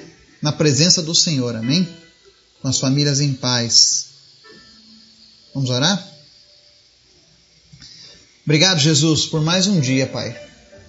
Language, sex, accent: Portuguese, male, Brazilian